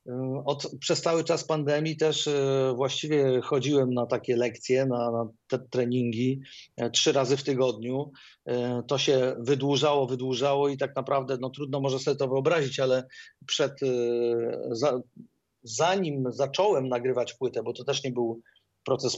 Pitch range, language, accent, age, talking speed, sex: 125-150 Hz, Polish, native, 30-49, 140 wpm, male